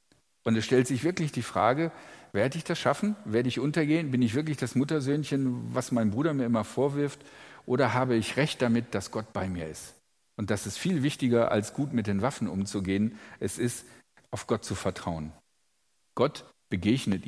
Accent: German